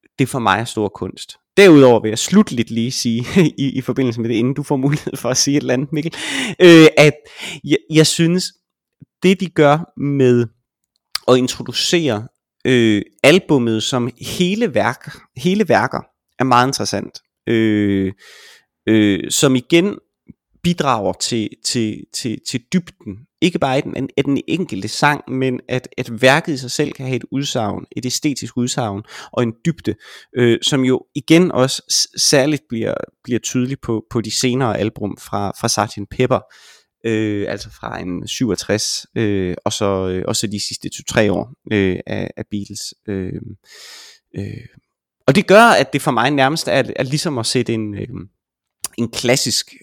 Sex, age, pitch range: male, 30-49, 110-150 Hz